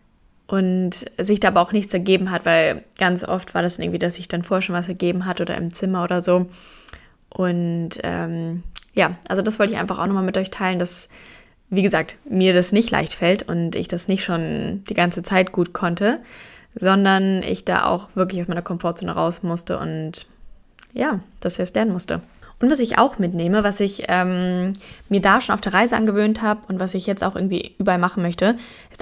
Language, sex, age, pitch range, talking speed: German, female, 10-29, 175-200 Hz, 205 wpm